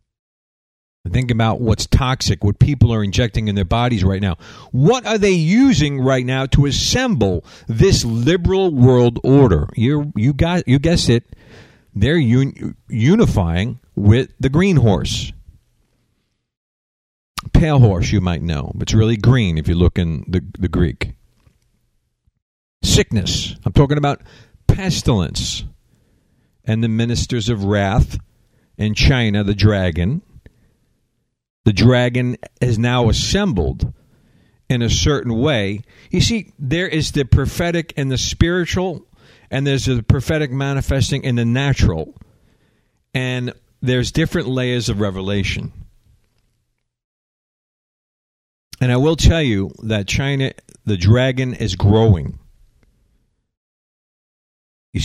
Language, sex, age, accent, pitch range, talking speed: English, male, 50-69, American, 105-130 Hz, 120 wpm